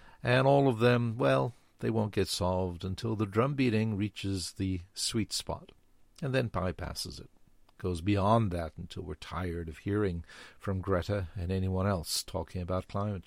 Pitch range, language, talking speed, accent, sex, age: 90-110 Hz, English, 170 wpm, American, male, 50-69